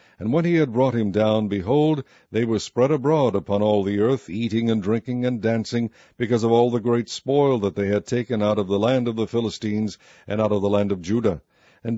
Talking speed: 230 wpm